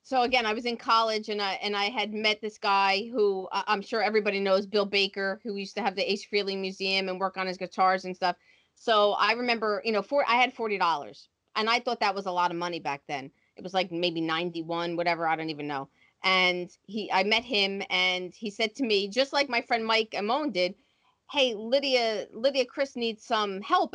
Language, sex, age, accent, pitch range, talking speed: English, female, 30-49, American, 200-250 Hz, 225 wpm